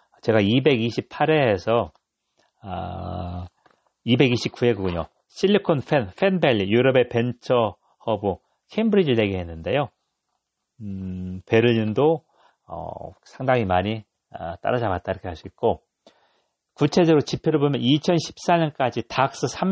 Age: 40-59